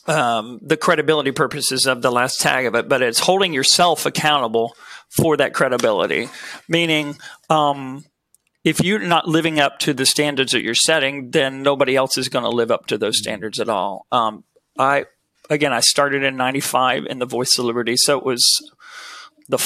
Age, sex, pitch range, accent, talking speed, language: 40-59, male, 125-155 Hz, American, 185 wpm, English